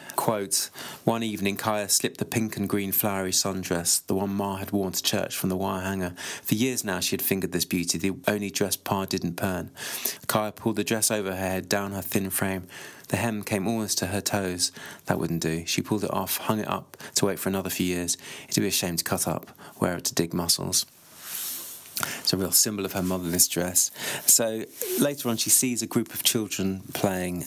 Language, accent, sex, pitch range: English, British, male, 90-110 Hz